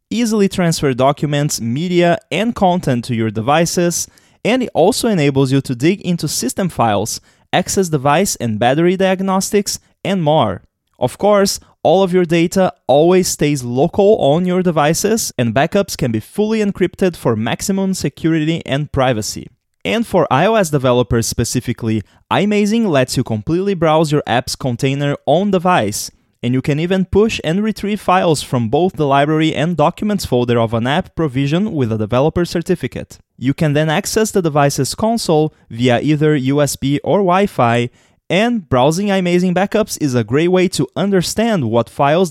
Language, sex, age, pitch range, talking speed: English, male, 20-39, 130-190 Hz, 155 wpm